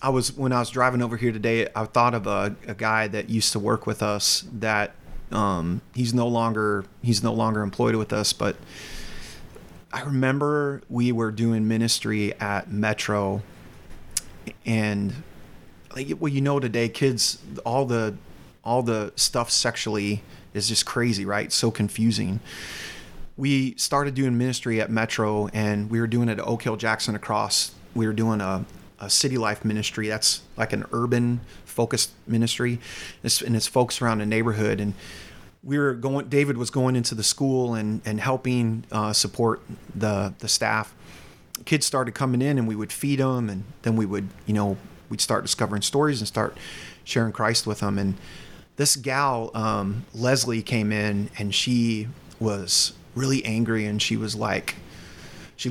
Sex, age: male, 30-49